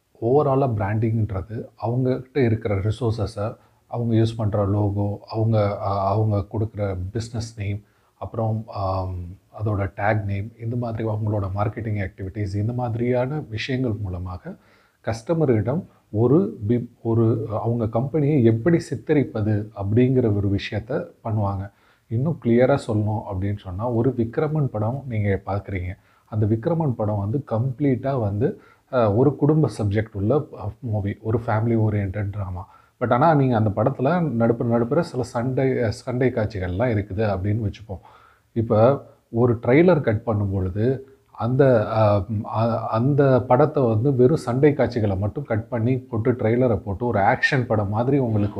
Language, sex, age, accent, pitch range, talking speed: Tamil, male, 30-49, native, 105-125 Hz, 125 wpm